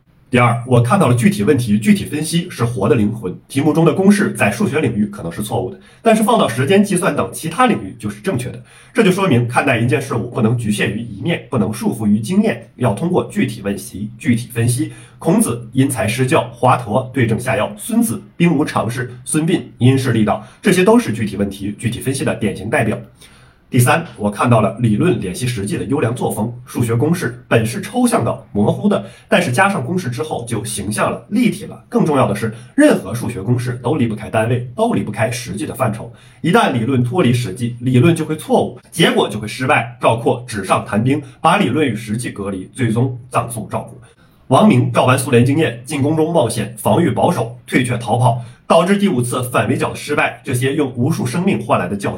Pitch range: 115-160 Hz